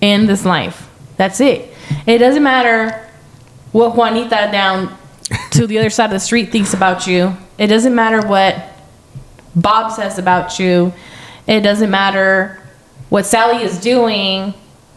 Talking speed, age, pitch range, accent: 145 wpm, 10-29, 180-230 Hz, American